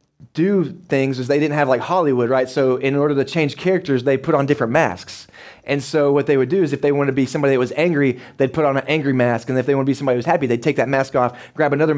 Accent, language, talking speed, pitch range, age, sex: American, English, 290 wpm, 120-145 Hz, 20-39, male